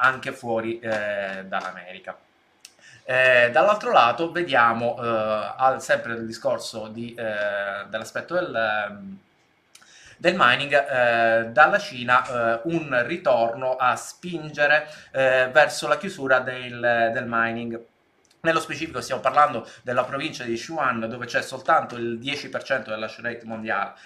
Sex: male